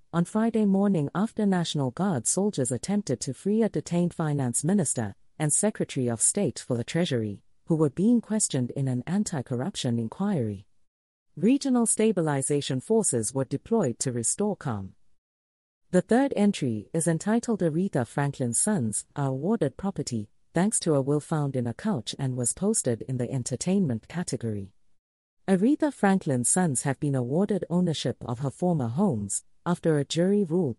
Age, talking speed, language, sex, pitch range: 40-59, 150 wpm, English, female, 120-195 Hz